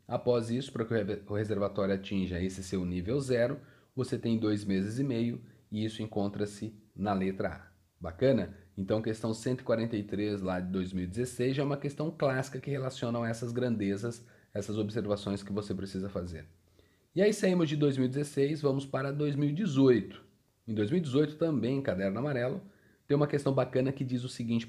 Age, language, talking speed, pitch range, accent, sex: 30-49, Portuguese, 165 wpm, 100-130 Hz, Brazilian, male